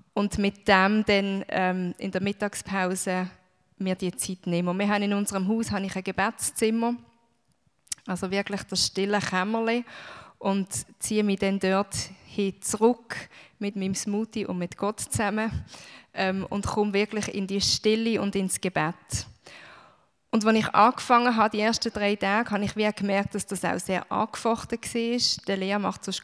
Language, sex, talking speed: German, female, 170 wpm